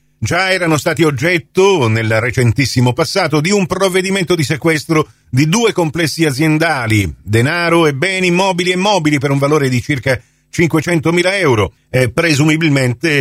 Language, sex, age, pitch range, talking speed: Italian, male, 50-69, 120-170 Hz, 145 wpm